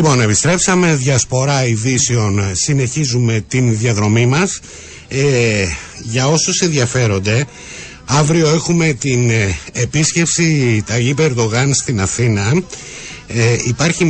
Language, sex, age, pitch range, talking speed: Greek, male, 60-79, 110-140 Hz, 95 wpm